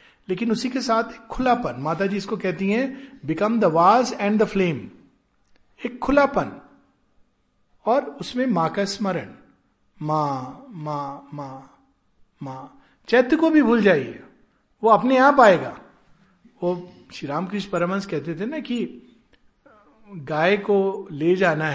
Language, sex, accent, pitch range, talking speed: Hindi, male, native, 165-245 Hz, 135 wpm